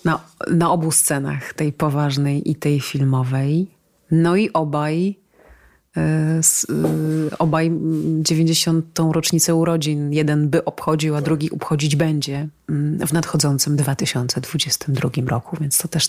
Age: 30-49